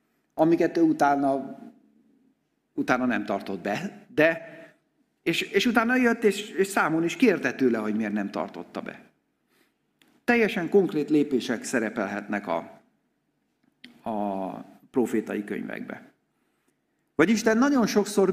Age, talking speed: 50-69, 115 wpm